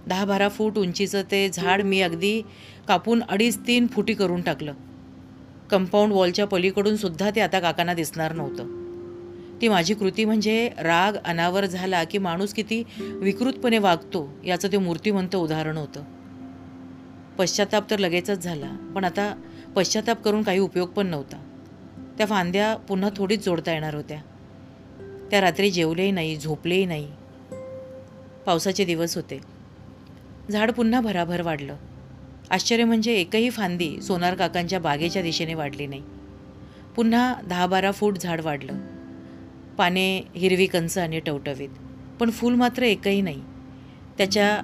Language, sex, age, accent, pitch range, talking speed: Marathi, female, 40-59, native, 150-205 Hz, 135 wpm